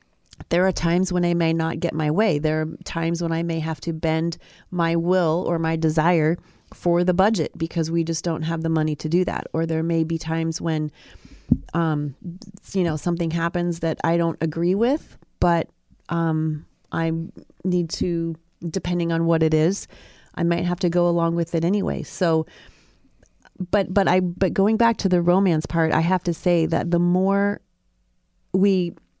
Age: 30-49